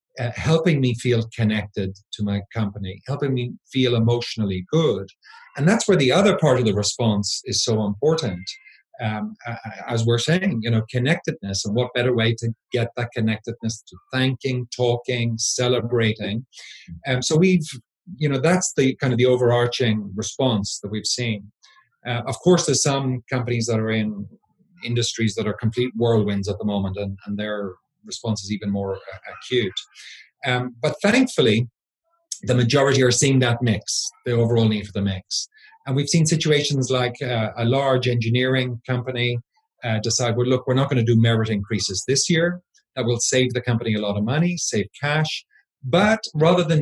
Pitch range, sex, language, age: 110-150 Hz, male, English, 40-59